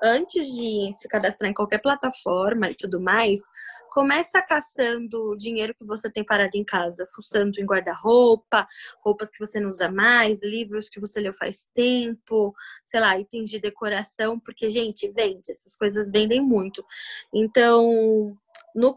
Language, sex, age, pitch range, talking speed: Portuguese, female, 20-39, 200-235 Hz, 155 wpm